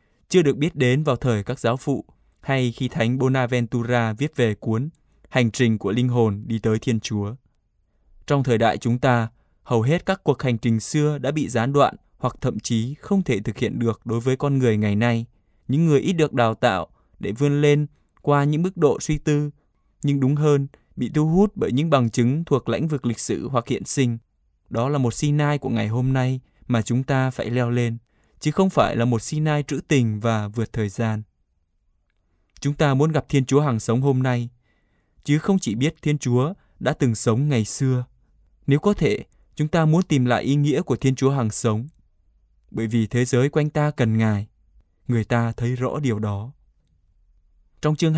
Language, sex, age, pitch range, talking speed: Vietnamese, male, 20-39, 110-145 Hz, 205 wpm